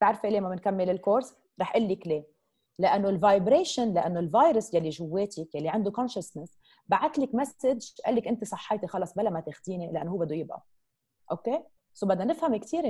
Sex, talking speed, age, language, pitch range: female, 175 wpm, 30-49, Arabic, 170-240 Hz